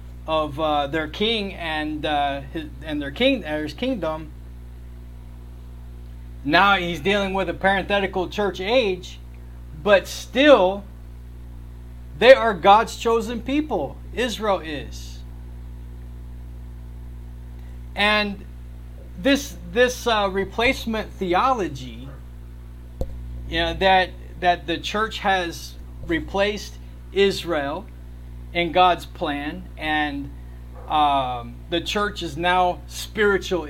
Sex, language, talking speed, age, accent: male, English, 95 wpm, 40-59, American